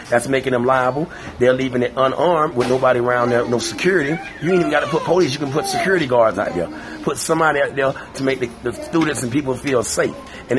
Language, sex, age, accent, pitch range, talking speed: English, male, 30-49, American, 125-150 Hz, 240 wpm